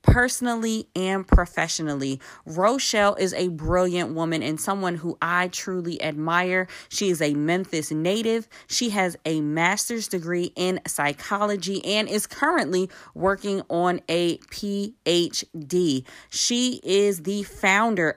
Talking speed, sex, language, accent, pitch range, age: 120 wpm, female, English, American, 165-200 Hz, 20-39